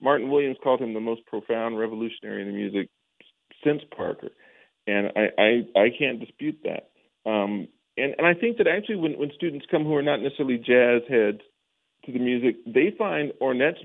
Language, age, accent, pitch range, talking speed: English, 40-59, American, 105-145 Hz, 185 wpm